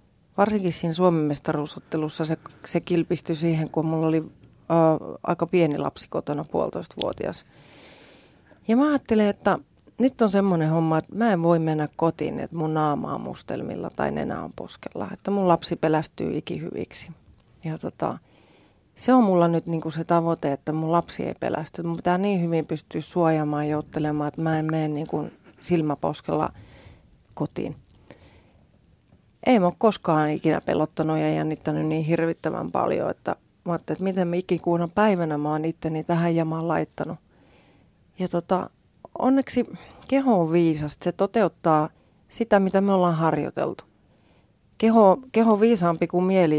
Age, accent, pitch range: 30-49, native, 155-185 Hz